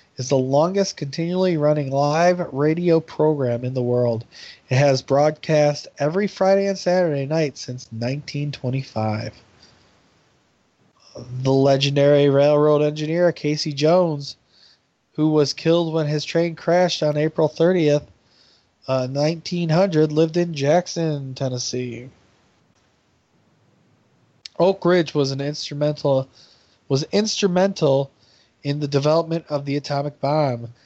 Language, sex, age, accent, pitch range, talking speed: English, male, 20-39, American, 135-160 Hz, 110 wpm